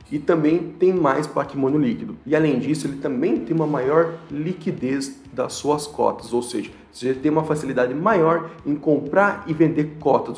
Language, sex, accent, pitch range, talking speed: Portuguese, male, Brazilian, 135-170 Hz, 175 wpm